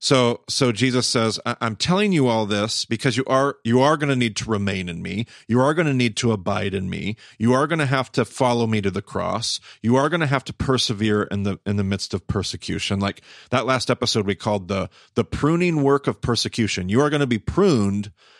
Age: 40-59